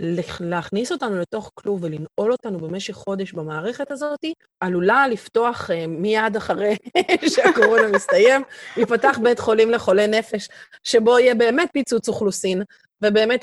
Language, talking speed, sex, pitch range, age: Hebrew, 125 wpm, female, 185-250 Hz, 30-49